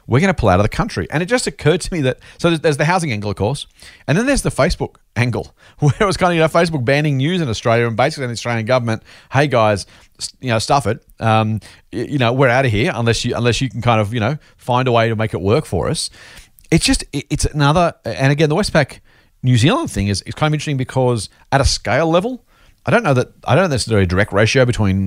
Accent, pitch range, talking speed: Australian, 110-150 Hz, 265 wpm